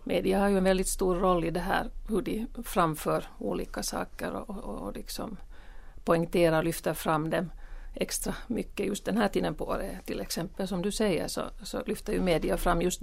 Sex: female